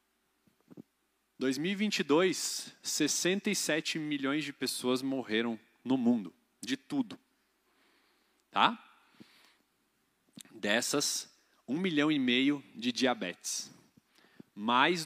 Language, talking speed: Portuguese, 70 wpm